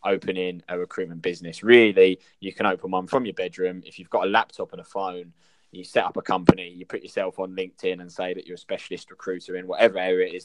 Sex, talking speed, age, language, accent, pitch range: male, 240 wpm, 20-39, English, British, 90-105 Hz